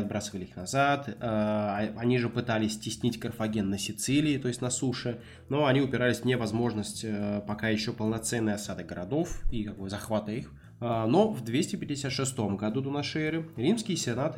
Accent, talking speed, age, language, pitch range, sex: native, 150 wpm, 20-39, Russian, 110-140 Hz, male